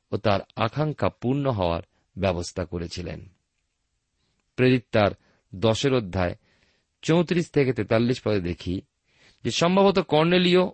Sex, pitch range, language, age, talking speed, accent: male, 100-150 Hz, Bengali, 40-59, 85 wpm, native